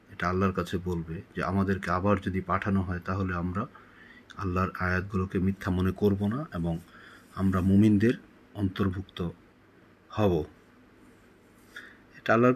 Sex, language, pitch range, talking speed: male, Bengali, 95-120 Hz, 110 wpm